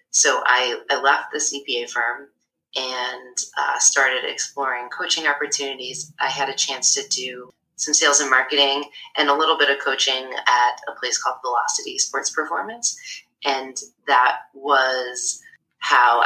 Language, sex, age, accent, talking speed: English, female, 20-39, American, 150 wpm